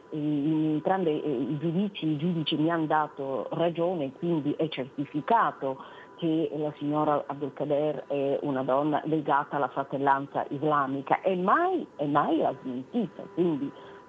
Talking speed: 140 wpm